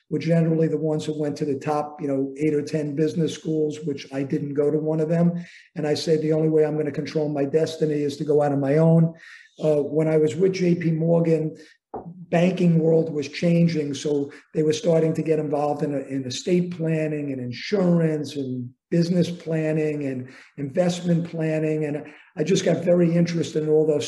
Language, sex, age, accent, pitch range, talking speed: English, male, 50-69, American, 150-165 Hz, 200 wpm